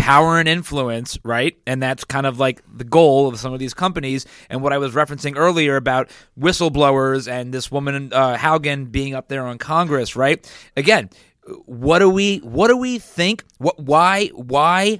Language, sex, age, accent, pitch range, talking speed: English, male, 30-49, American, 135-175 Hz, 185 wpm